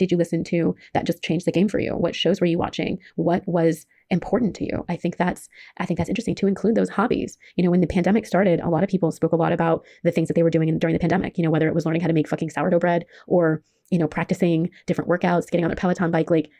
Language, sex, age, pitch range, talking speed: English, female, 20-39, 165-195 Hz, 285 wpm